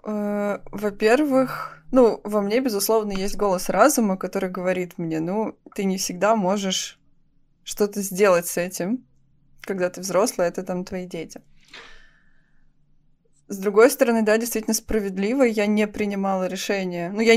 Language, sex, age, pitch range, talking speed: Russian, female, 20-39, 180-220 Hz, 135 wpm